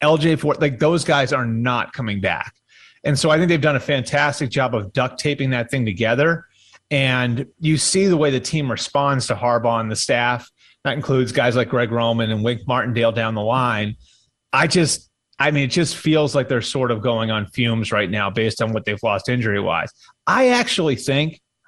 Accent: American